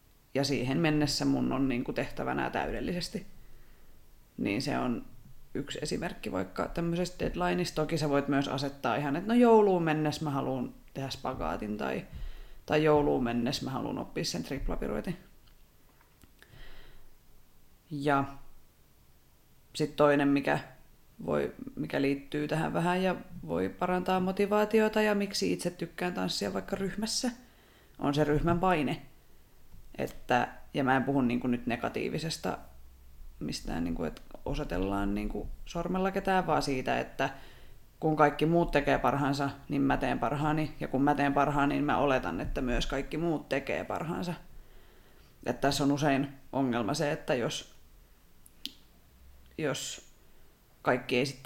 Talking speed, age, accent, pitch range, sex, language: 130 wpm, 30-49, native, 120-160 Hz, female, Finnish